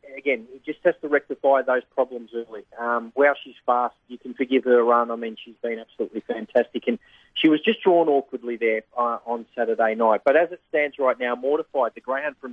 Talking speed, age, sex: 215 wpm, 40-59, male